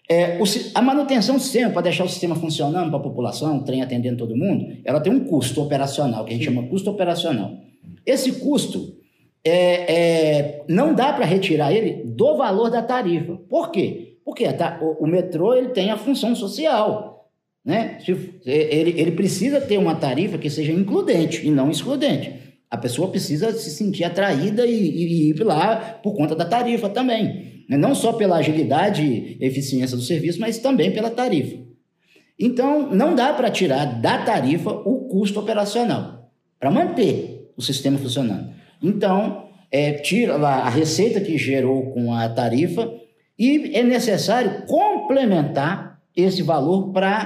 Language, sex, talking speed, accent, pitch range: Portuguese, male, 165 wpm, Brazilian, 155-220 Hz